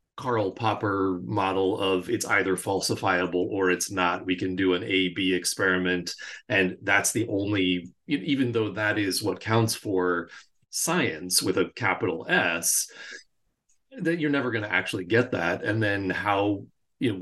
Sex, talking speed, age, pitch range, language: male, 155 wpm, 30-49, 90-110 Hz, English